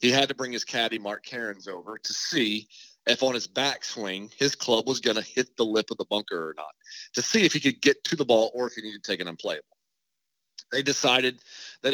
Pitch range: 100-125 Hz